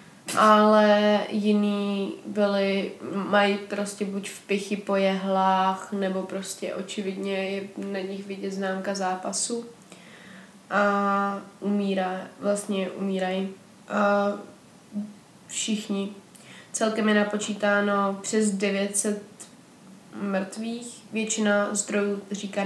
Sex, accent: female, native